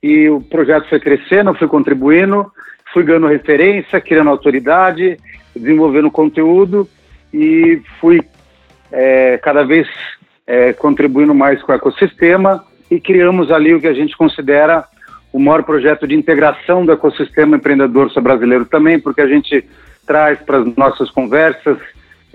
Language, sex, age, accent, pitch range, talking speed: Portuguese, male, 60-79, Brazilian, 140-165 Hz, 130 wpm